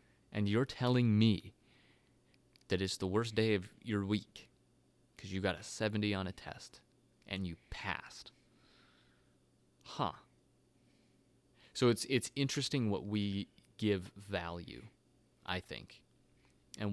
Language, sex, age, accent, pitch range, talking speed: English, male, 30-49, American, 95-115 Hz, 125 wpm